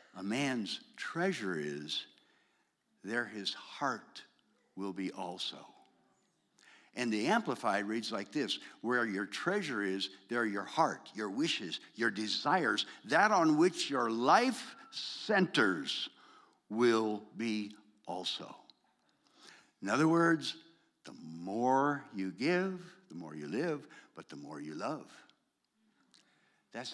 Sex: male